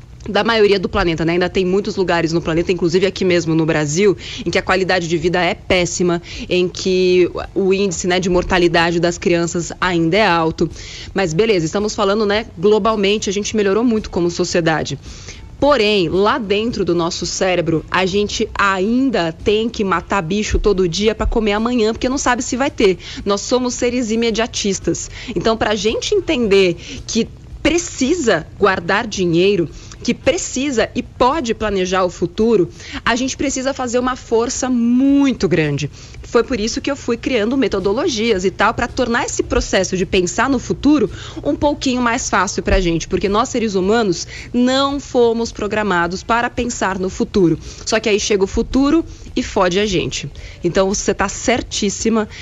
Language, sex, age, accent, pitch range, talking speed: Portuguese, female, 20-39, Brazilian, 180-235 Hz, 170 wpm